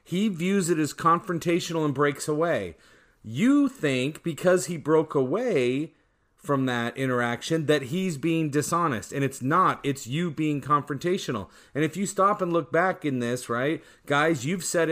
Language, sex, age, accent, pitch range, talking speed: English, male, 40-59, American, 135-175 Hz, 165 wpm